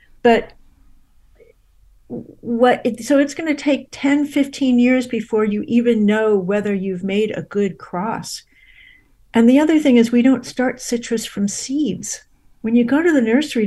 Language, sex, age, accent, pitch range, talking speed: English, female, 60-79, American, 200-245 Hz, 165 wpm